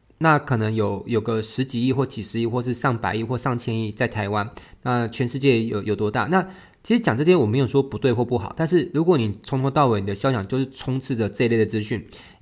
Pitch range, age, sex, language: 110-150 Hz, 20-39, male, Chinese